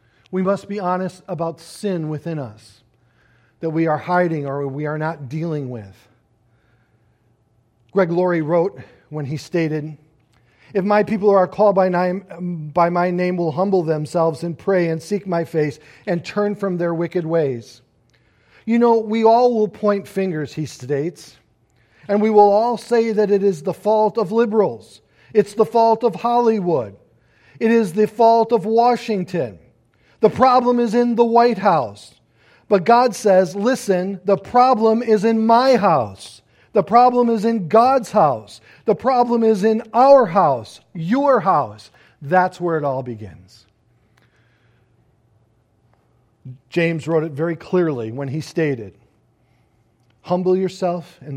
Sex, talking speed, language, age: male, 150 wpm, English, 50-69